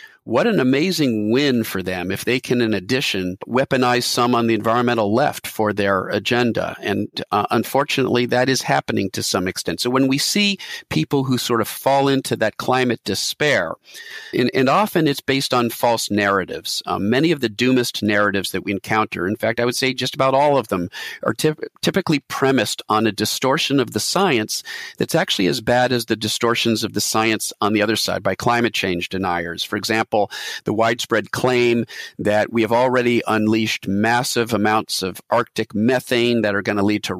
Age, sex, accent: 50-69, male, American